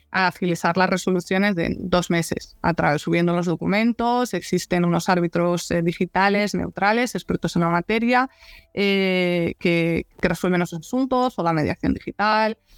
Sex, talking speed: female, 140 wpm